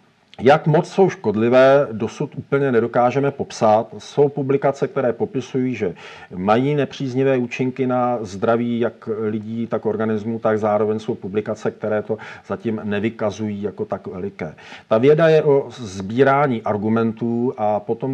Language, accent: Czech, native